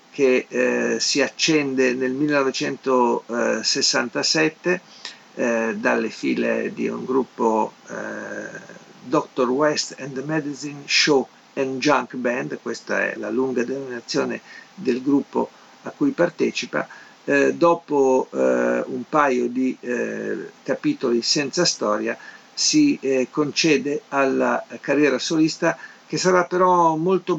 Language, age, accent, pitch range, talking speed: Italian, 50-69, native, 120-155 Hz, 115 wpm